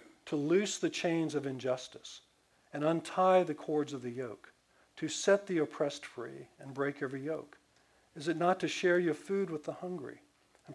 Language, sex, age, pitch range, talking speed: English, male, 50-69, 130-165 Hz, 185 wpm